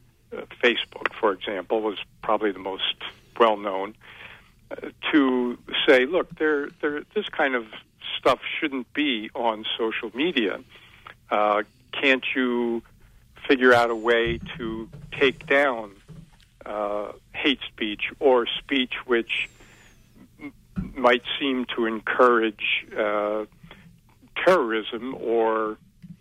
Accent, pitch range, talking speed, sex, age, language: American, 110-125 Hz, 100 wpm, male, 60-79, English